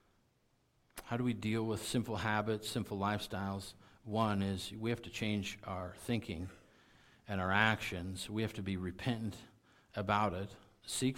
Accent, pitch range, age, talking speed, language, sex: American, 105-135 Hz, 50-69, 150 wpm, English, male